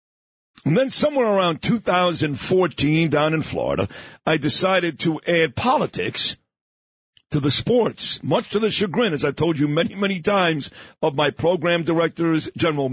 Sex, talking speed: male, 150 wpm